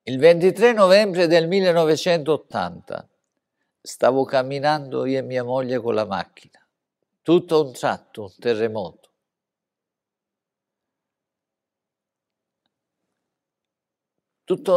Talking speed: 80 wpm